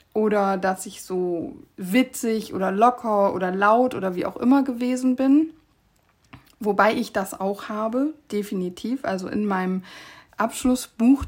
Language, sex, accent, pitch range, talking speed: German, female, German, 195-235 Hz, 135 wpm